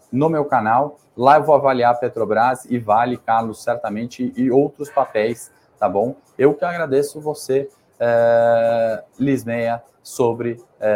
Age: 20-39